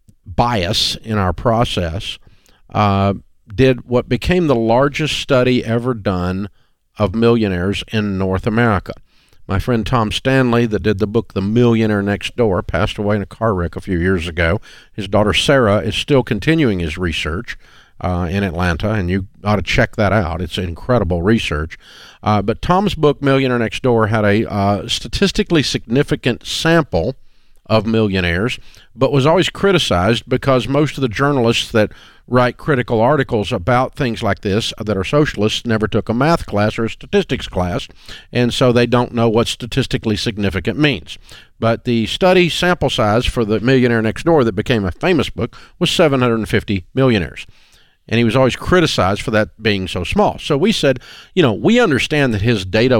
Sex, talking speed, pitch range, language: male, 170 wpm, 100-130 Hz, English